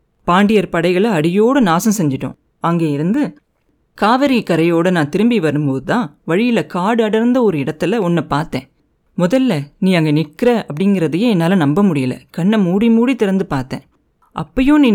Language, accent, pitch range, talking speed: Tamil, native, 155-220 Hz, 140 wpm